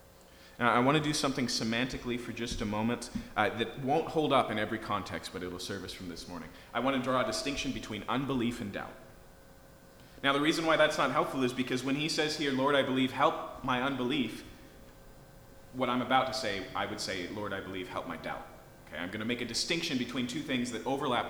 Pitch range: 90-135 Hz